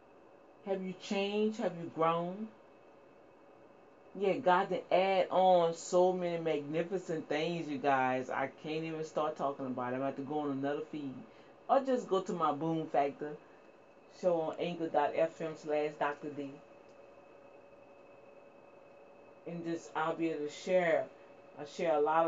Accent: American